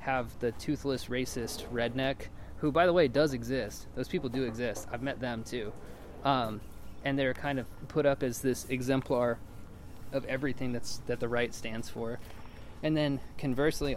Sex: male